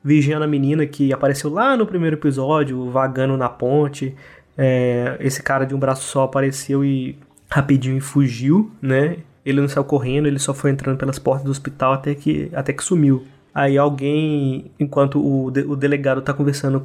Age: 20-39